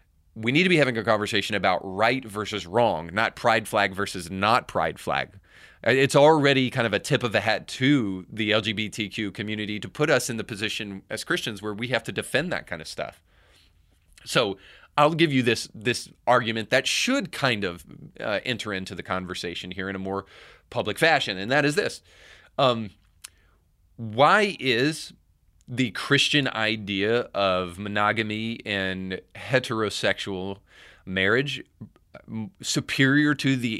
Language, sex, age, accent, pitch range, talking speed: English, male, 30-49, American, 95-125 Hz, 155 wpm